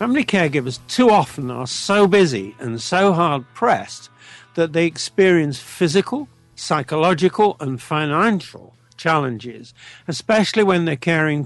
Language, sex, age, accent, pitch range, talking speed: English, male, 50-69, British, 125-175 Hz, 115 wpm